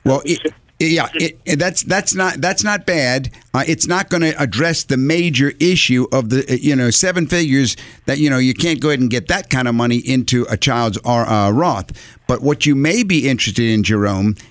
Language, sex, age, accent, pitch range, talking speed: English, male, 50-69, American, 120-150 Hz, 210 wpm